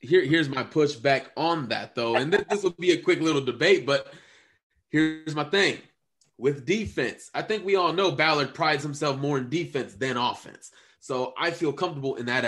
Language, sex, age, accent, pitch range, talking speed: English, male, 20-39, American, 135-215 Hz, 190 wpm